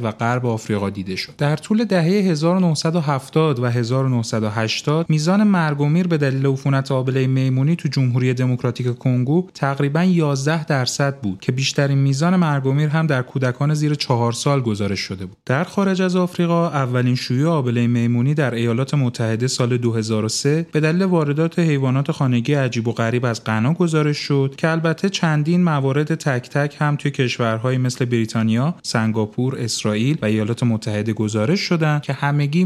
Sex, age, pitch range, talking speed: male, 30-49, 125-165 Hz, 155 wpm